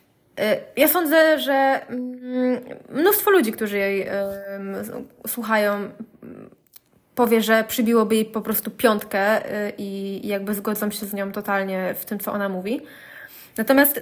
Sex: female